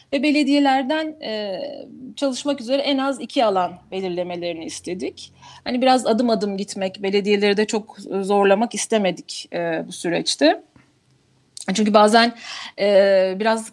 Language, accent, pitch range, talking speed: Turkish, native, 195-255 Hz, 110 wpm